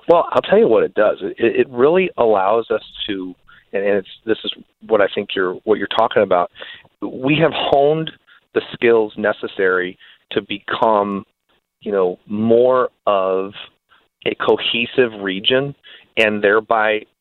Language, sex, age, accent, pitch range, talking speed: English, male, 40-59, American, 95-140 Hz, 145 wpm